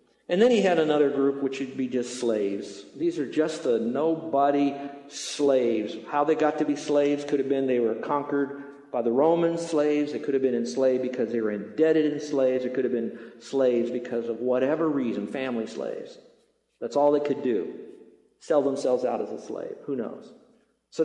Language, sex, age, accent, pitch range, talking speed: English, male, 50-69, American, 135-215 Hz, 195 wpm